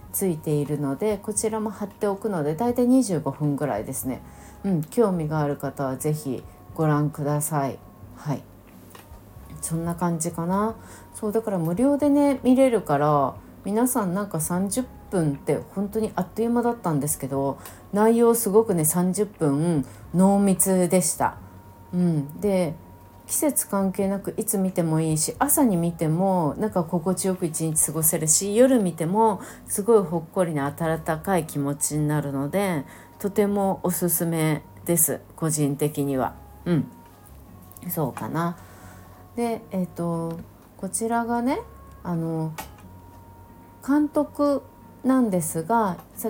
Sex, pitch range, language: female, 145-205 Hz, Japanese